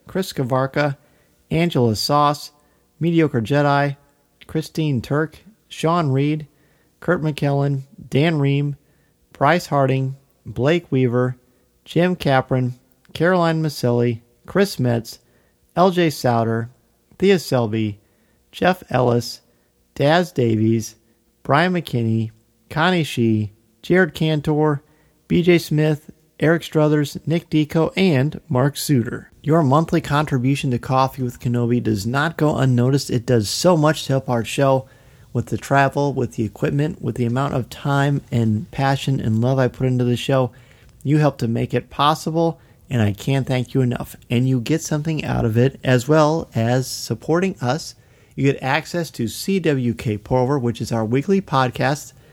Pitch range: 120-155 Hz